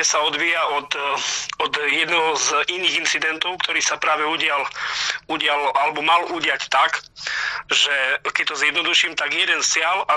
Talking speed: 150 wpm